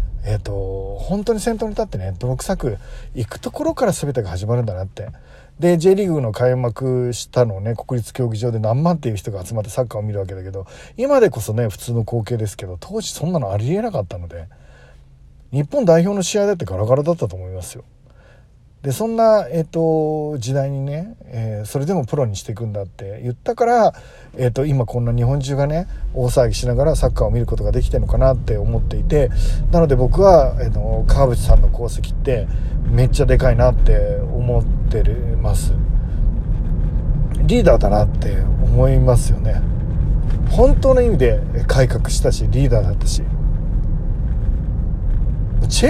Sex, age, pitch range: male, 40-59, 105-140 Hz